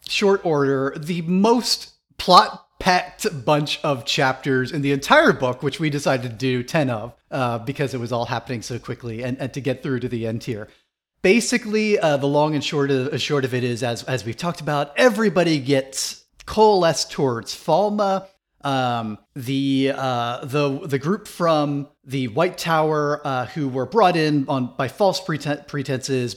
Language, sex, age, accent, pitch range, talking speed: English, male, 30-49, American, 130-155 Hz, 175 wpm